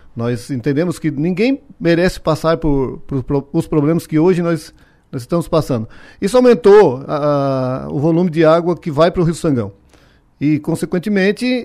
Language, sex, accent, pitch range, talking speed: Portuguese, male, Brazilian, 145-180 Hz, 160 wpm